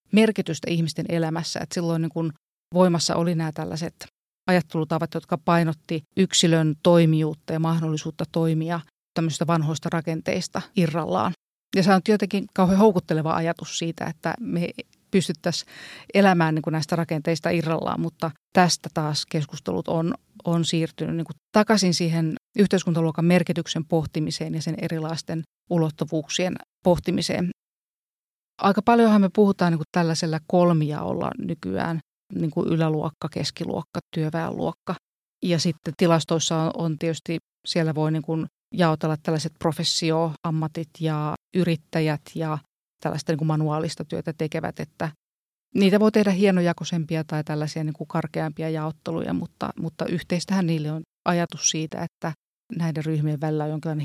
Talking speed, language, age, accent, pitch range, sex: 125 wpm, Finnish, 30-49, native, 160-175 Hz, female